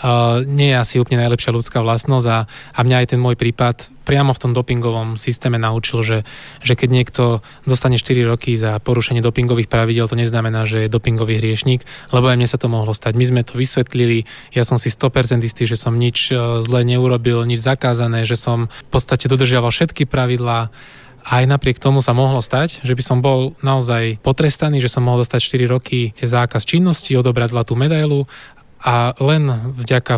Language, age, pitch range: Slovak, 20-39, 120-130 Hz